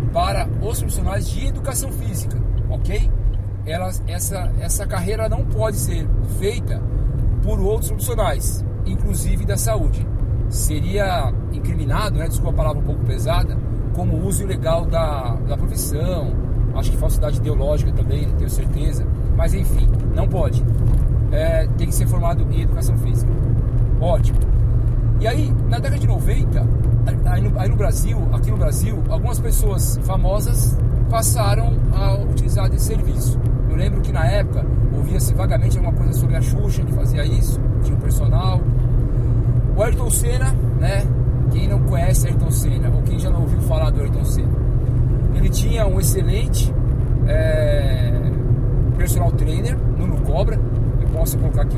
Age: 40-59